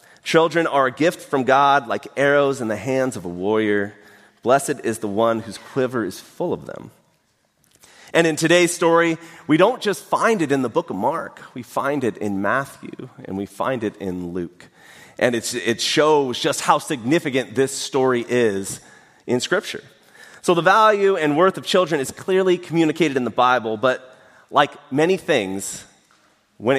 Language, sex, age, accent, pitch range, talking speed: English, male, 30-49, American, 125-160 Hz, 175 wpm